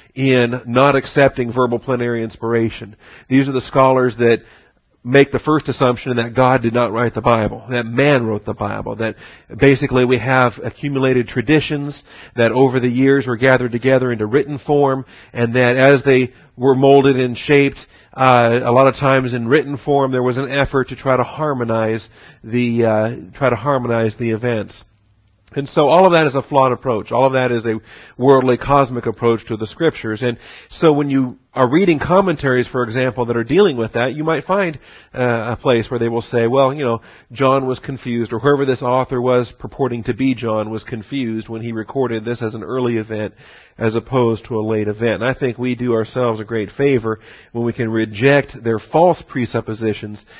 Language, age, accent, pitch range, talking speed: English, 50-69, American, 115-135 Hz, 195 wpm